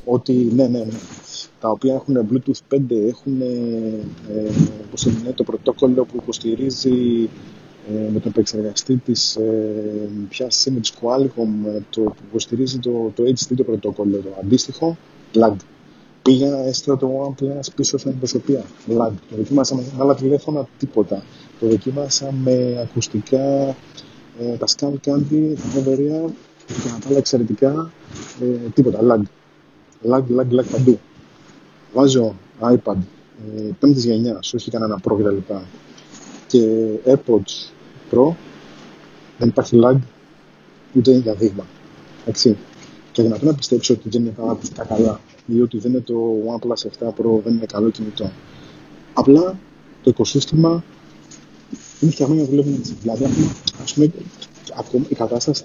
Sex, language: male, Greek